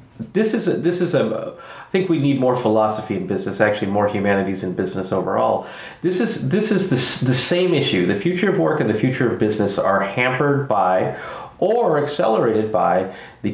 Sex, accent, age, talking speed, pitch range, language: male, American, 30-49, 195 wpm, 100-130 Hz, English